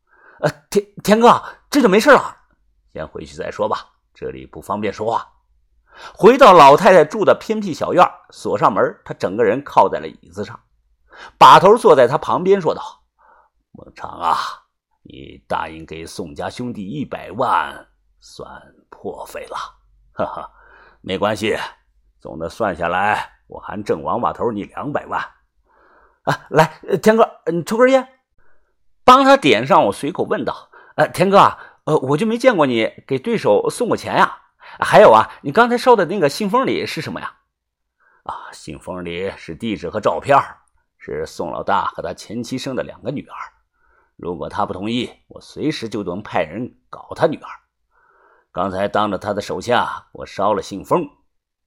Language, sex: Chinese, male